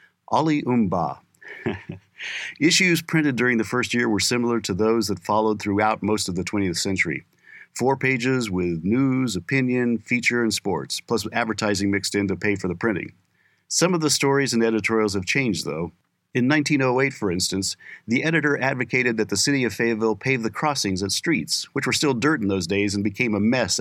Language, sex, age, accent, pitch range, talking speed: English, male, 50-69, American, 105-135 Hz, 185 wpm